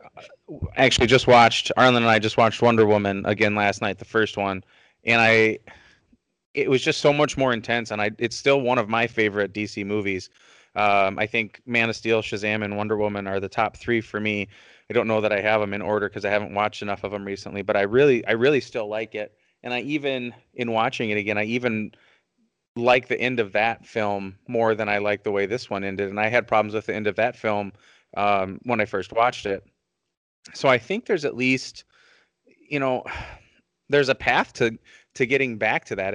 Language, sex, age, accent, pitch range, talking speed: English, male, 30-49, American, 105-120 Hz, 220 wpm